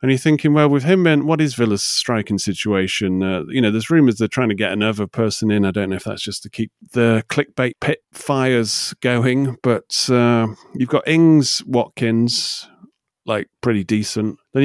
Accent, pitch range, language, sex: British, 100-135 Hz, English, male